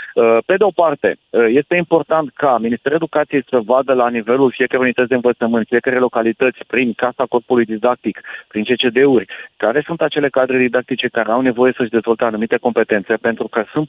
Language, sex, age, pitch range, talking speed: Romanian, male, 30-49, 115-140 Hz, 175 wpm